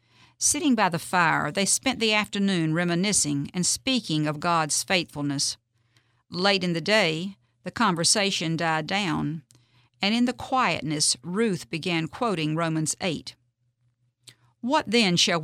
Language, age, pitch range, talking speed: English, 50-69, 135-200 Hz, 130 wpm